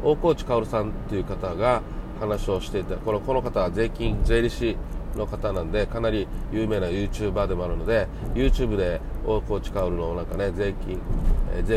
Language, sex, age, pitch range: Japanese, male, 40-59, 95-120 Hz